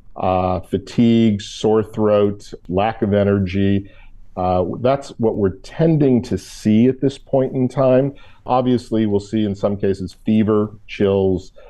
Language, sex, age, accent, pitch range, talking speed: English, male, 50-69, American, 100-115 Hz, 140 wpm